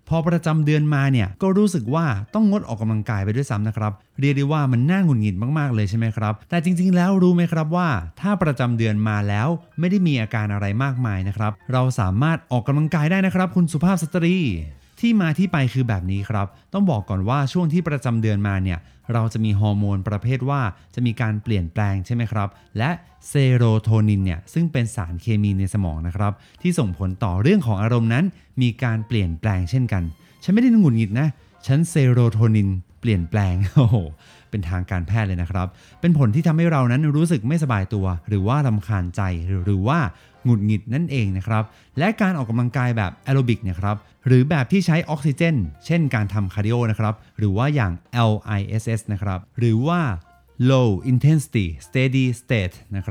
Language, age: Thai, 20-39